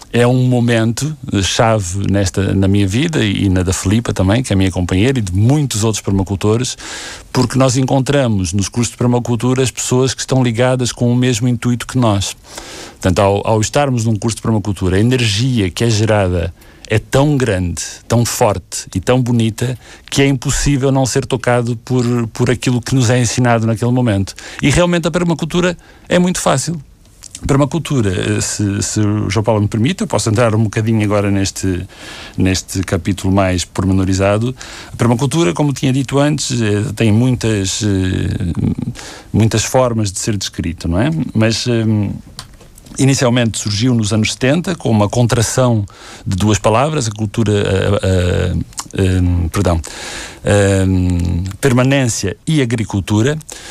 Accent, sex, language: Brazilian, male, Portuguese